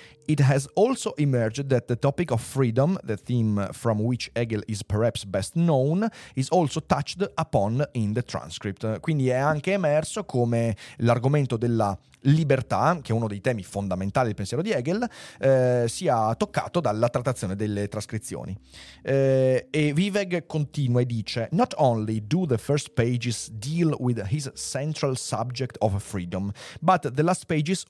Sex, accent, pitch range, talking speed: male, native, 115-150 Hz, 155 wpm